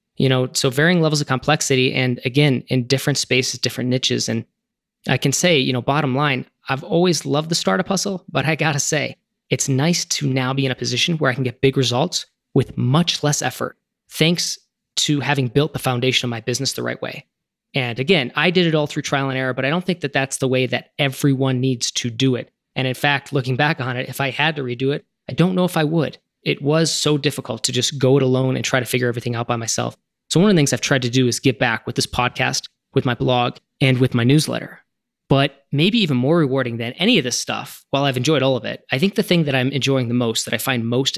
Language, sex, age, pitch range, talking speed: English, male, 20-39, 125-150 Hz, 255 wpm